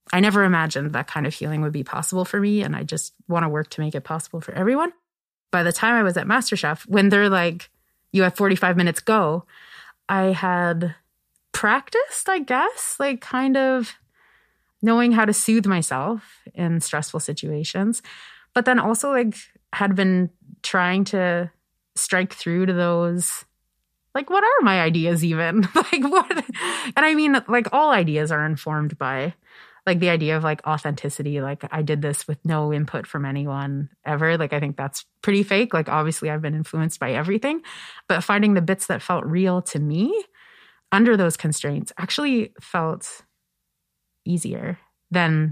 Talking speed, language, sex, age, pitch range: 170 wpm, English, female, 30-49, 155-210 Hz